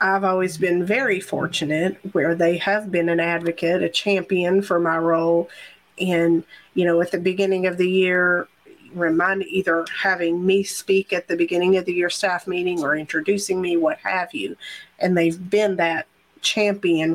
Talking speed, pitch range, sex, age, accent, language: 170 wpm, 170-200 Hz, female, 40-59, American, English